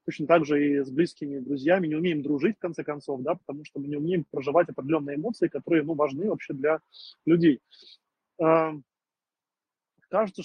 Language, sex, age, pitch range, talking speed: Russian, male, 20-39, 150-180 Hz, 165 wpm